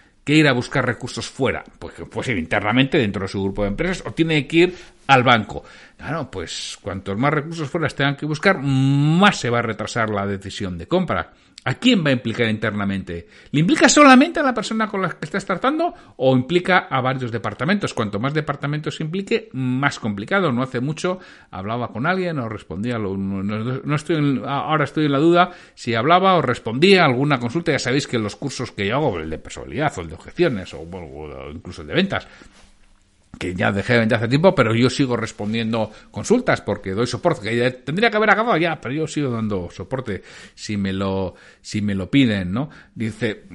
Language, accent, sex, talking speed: Spanish, Spanish, male, 200 wpm